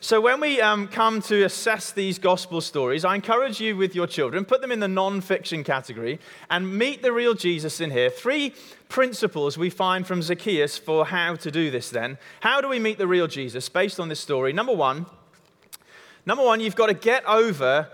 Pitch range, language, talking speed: 170-225 Hz, English, 200 wpm